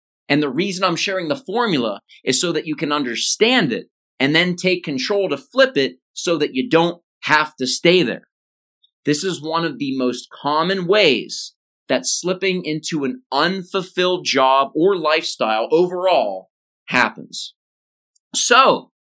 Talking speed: 150 wpm